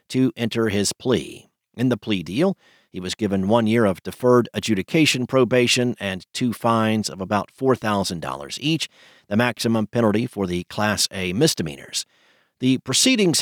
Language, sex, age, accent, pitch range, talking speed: English, male, 50-69, American, 105-130 Hz, 150 wpm